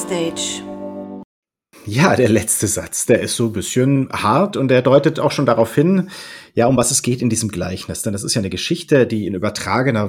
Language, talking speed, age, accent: German, 200 wpm, 40-59, German